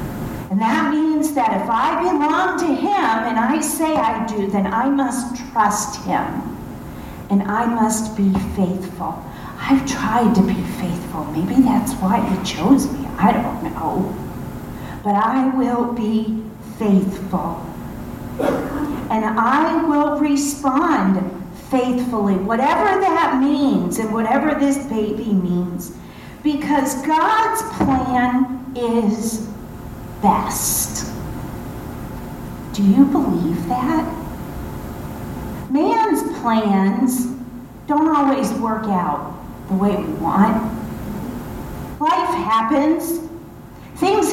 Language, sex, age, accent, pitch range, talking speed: English, female, 40-59, American, 220-295 Hz, 105 wpm